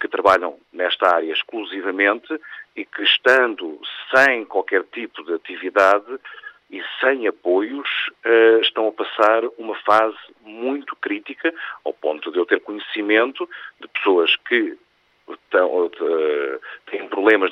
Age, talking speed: 50-69, 115 wpm